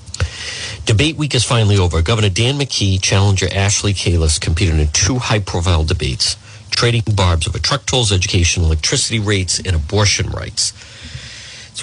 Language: English